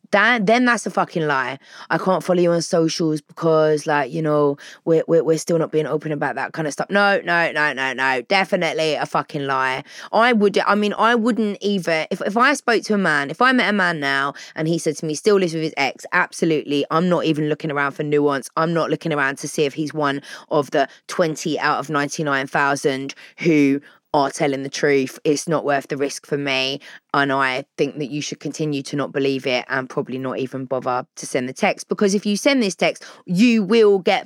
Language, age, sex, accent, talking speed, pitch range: English, 20-39, female, British, 230 wpm, 145-205 Hz